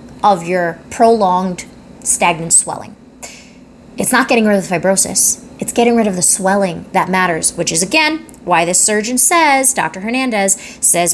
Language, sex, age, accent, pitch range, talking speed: English, female, 20-39, American, 190-245 Hz, 160 wpm